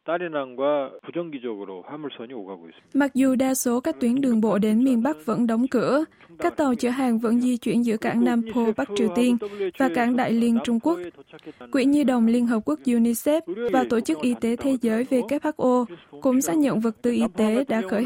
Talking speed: 195 wpm